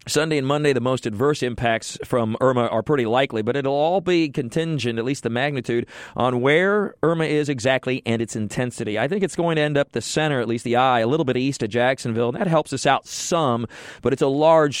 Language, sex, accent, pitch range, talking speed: English, male, American, 115-145 Hz, 230 wpm